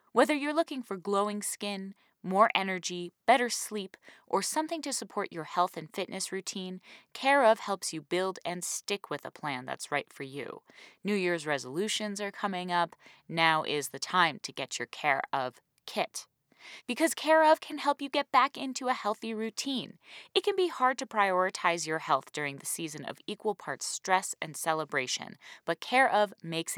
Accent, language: American, English